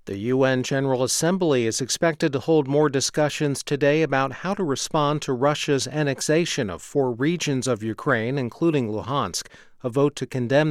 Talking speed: 165 wpm